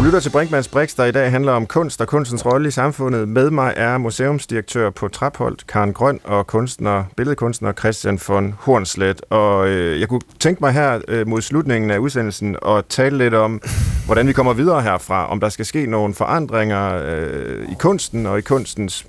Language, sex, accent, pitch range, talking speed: Danish, male, native, 110-140 Hz, 190 wpm